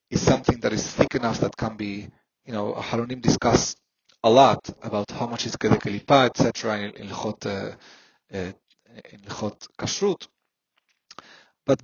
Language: English